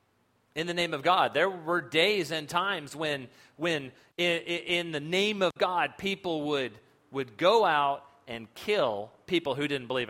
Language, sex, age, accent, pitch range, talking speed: English, male, 40-59, American, 130-195 Hz, 170 wpm